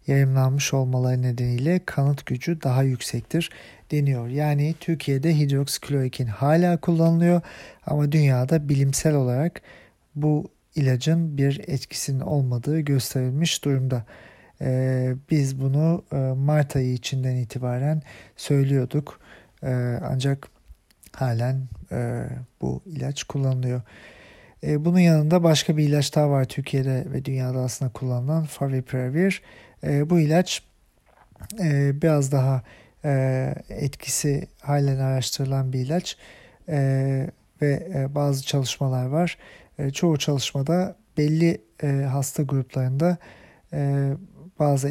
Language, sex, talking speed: German, male, 105 wpm